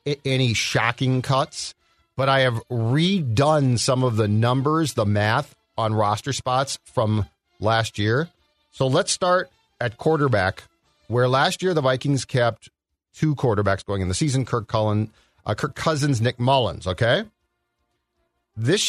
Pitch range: 110-135 Hz